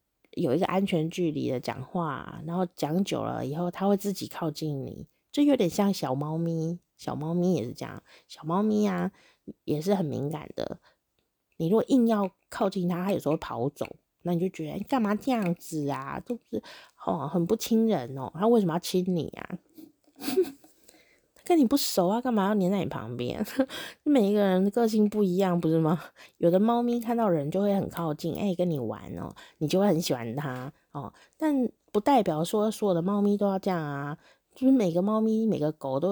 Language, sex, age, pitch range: Chinese, female, 30-49, 160-220 Hz